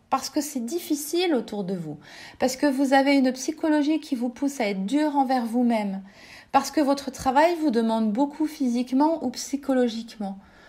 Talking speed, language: 175 wpm, French